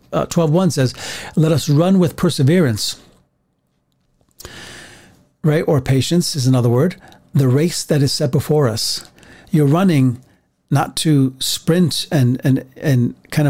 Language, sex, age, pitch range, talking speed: English, male, 40-59, 130-165 Hz, 135 wpm